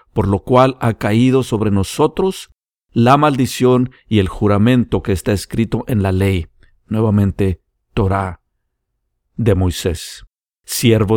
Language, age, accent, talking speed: Spanish, 50-69, Mexican, 125 wpm